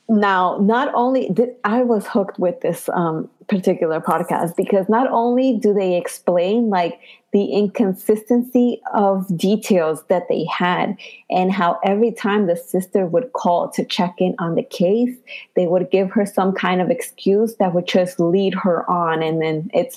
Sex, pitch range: female, 180-230 Hz